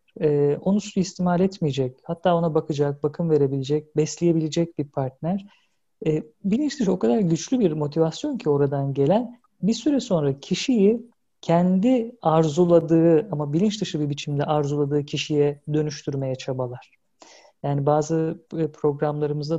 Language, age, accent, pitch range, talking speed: Turkish, 40-59, native, 150-205 Hz, 125 wpm